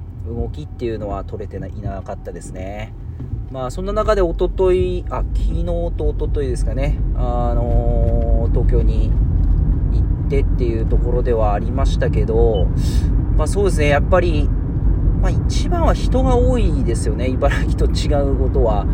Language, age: Japanese, 40-59